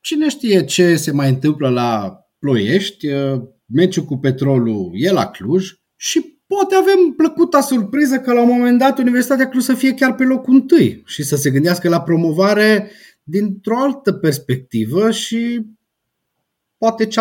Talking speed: 155 wpm